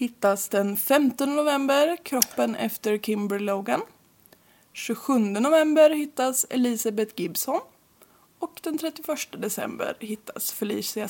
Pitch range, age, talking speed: 215-285 Hz, 20-39, 105 wpm